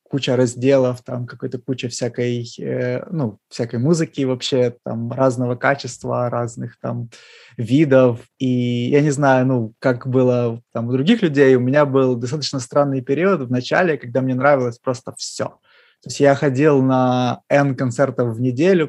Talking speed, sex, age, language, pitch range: 160 wpm, male, 20-39, Ukrainian, 120-135 Hz